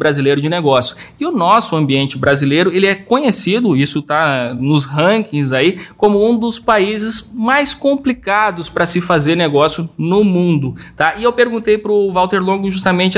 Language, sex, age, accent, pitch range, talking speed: Portuguese, male, 20-39, Brazilian, 150-195 Hz, 165 wpm